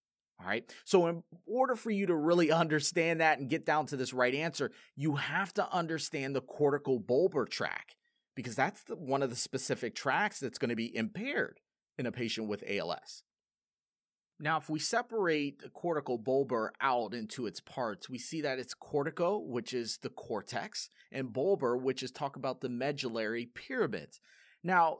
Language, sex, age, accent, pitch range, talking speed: English, male, 30-49, American, 125-175 Hz, 180 wpm